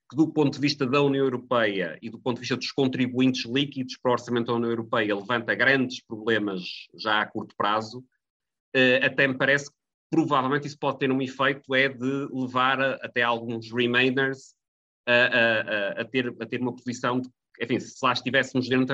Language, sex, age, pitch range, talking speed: Portuguese, male, 30-49, 110-135 Hz, 195 wpm